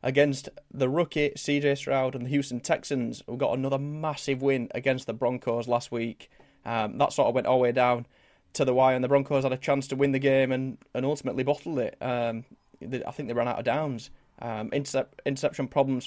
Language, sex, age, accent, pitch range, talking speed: English, male, 20-39, British, 120-135 Hz, 215 wpm